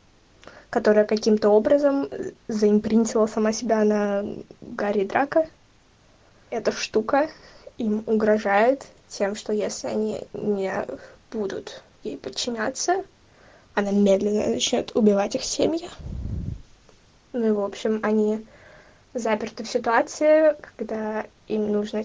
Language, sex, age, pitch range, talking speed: Russian, female, 10-29, 210-260 Hz, 105 wpm